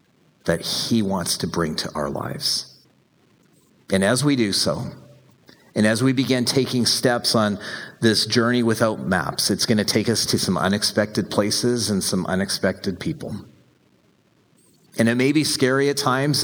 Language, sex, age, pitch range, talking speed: English, male, 40-59, 90-120 Hz, 160 wpm